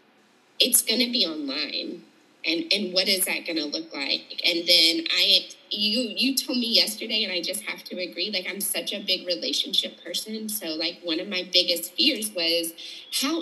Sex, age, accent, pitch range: female, 20-39, American, 180-285 Hz